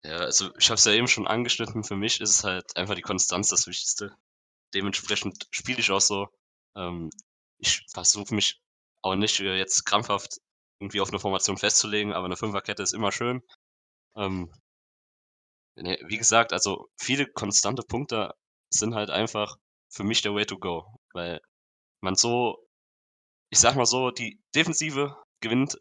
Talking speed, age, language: 160 wpm, 20-39, German